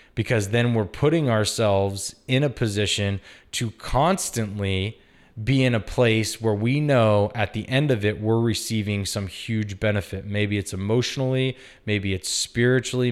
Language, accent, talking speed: English, American, 150 wpm